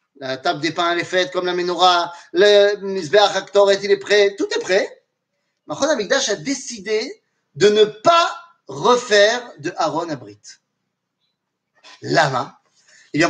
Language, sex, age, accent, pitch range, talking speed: French, male, 30-49, French, 175-260 Hz, 150 wpm